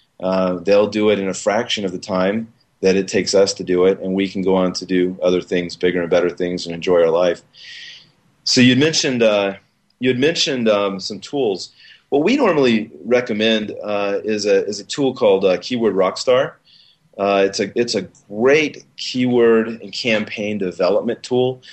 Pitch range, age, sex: 95-115 Hz, 30-49, male